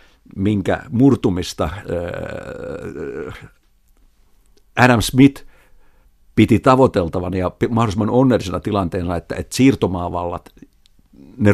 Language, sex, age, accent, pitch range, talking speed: Finnish, male, 60-79, native, 95-125 Hz, 70 wpm